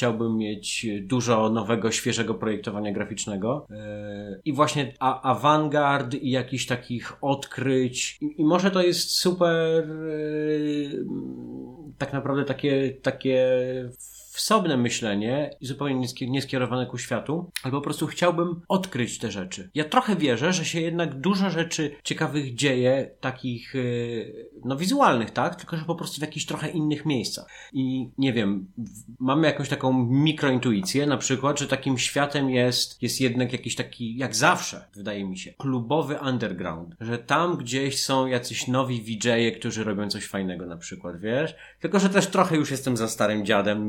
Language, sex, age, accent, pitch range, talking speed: Polish, male, 30-49, native, 105-145 Hz, 155 wpm